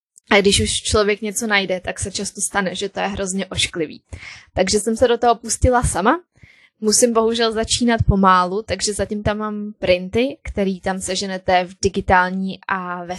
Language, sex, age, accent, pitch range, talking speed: Czech, female, 20-39, native, 185-215 Hz, 175 wpm